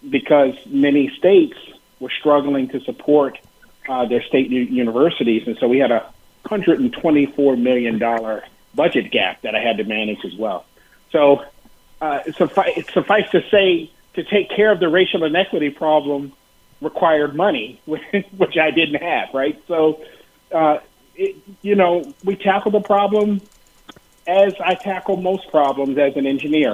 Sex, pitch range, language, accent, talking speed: male, 125-160 Hz, English, American, 145 wpm